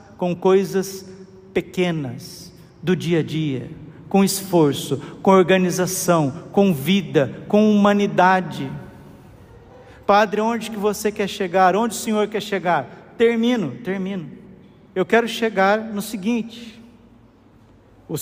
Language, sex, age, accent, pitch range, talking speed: Portuguese, male, 50-69, Brazilian, 180-220 Hz, 110 wpm